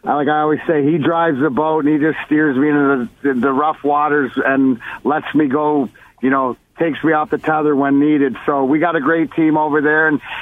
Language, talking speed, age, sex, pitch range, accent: English, 235 wpm, 50-69, male, 145-175 Hz, American